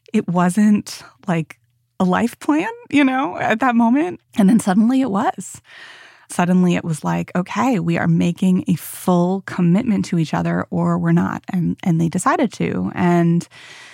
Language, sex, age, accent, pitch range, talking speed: English, female, 20-39, American, 165-190 Hz, 170 wpm